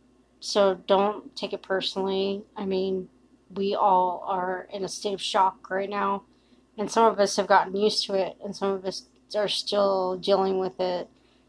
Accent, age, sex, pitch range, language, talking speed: American, 30-49, female, 185-220 Hz, English, 185 wpm